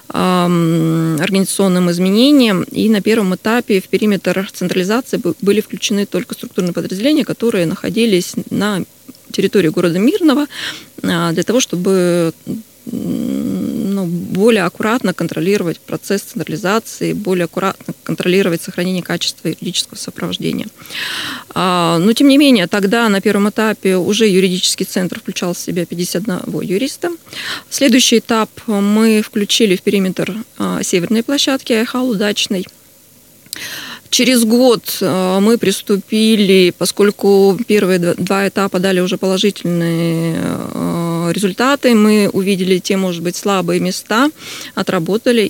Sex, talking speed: female, 105 wpm